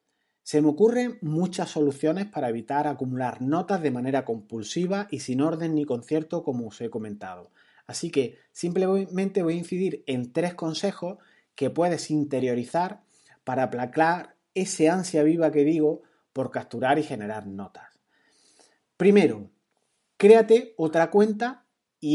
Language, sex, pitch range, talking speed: Spanish, male, 130-175 Hz, 135 wpm